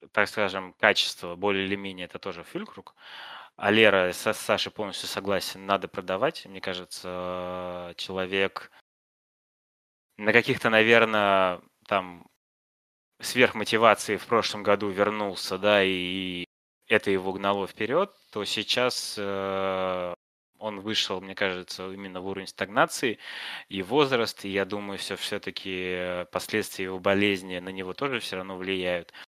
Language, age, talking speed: Russian, 20-39, 125 wpm